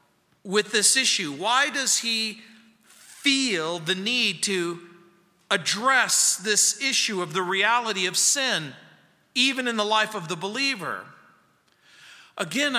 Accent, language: American, English